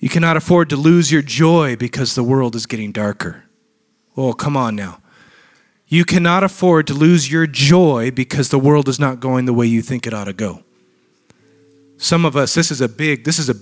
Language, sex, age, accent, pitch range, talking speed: English, male, 30-49, American, 125-175 Hz, 210 wpm